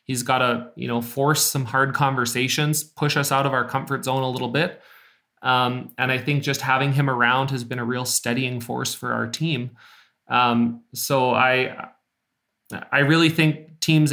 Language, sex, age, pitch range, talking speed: English, male, 30-49, 115-135 Hz, 185 wpm